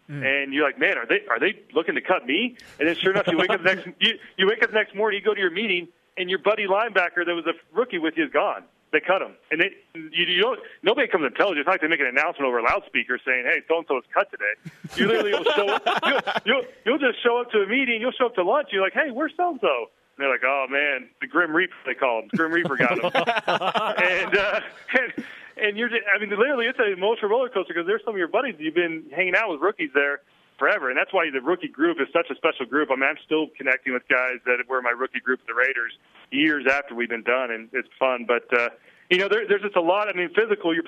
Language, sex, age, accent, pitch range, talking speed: English, male, 40-59, American, 140-215 Hz, 275 wpm